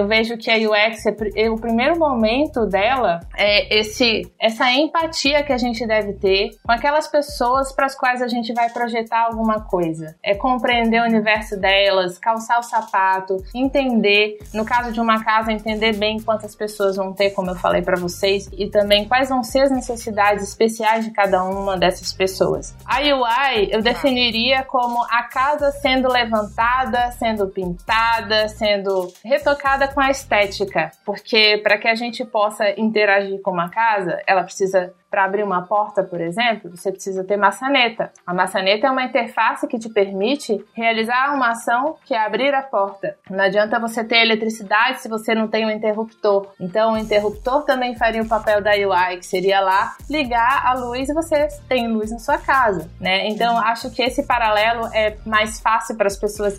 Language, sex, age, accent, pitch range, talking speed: Portuguese, female, 20-39, Brazilian, 200-240 Hz, 175 wpm